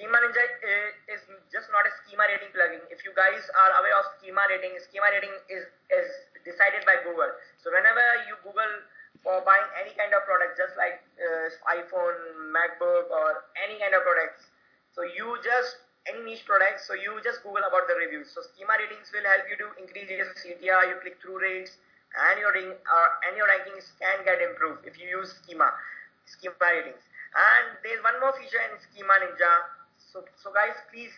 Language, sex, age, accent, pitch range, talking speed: English, male, 20-39, Indian, 180-215 Hz, 190 wpm